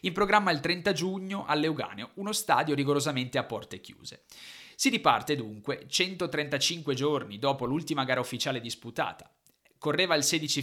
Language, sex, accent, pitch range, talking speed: Italian, male, native, 125-170 Hz, 140 wpm